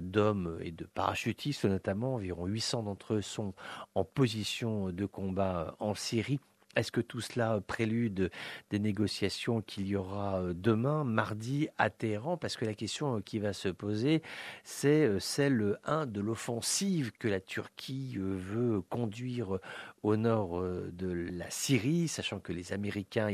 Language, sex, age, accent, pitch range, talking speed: English, male, 50-69, French, 100-120 Hz, 145 wpm